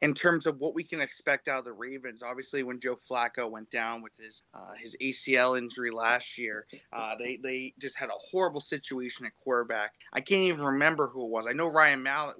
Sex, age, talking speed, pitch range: male, 30-49, 225 wpm, 120-145 Hz